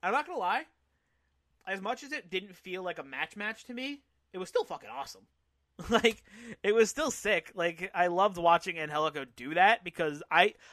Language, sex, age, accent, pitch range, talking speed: English, male, 30-49, American, 145-210 Hz, 195 wpm